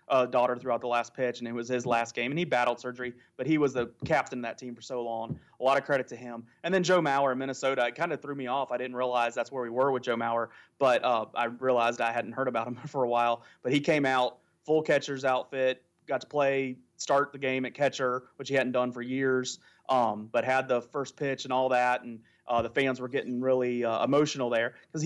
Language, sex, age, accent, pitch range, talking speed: English, male, 30-49, American, 120-140 Hz, 260 wpm